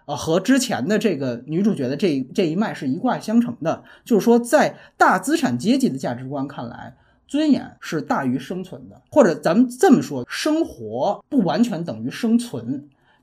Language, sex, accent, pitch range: Chinese, male, native, 150-245 Hz